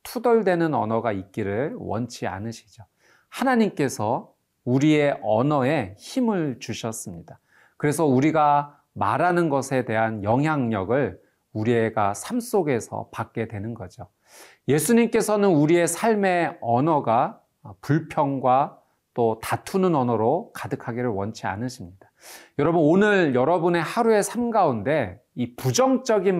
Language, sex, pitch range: Korean, male, 115-160 Hz